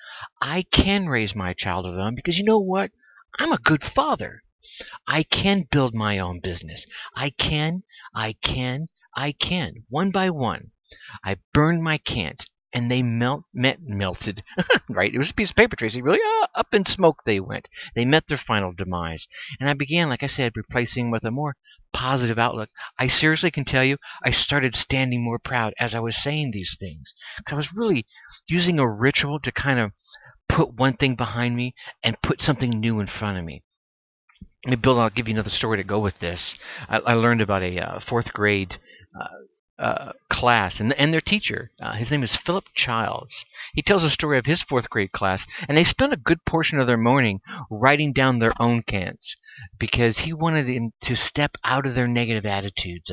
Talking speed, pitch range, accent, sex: 200 wpm, 110-150 Hz, American, male